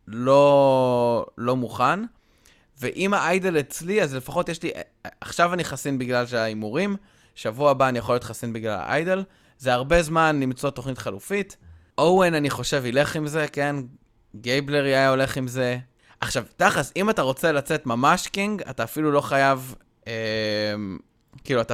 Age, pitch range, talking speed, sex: 20-39, 120-165 Hz, 155 wpm, male